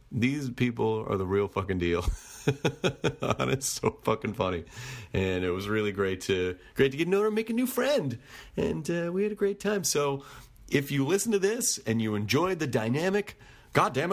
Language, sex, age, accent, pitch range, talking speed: English, male, 40-59, American, 100-145 Hz, 195 wpm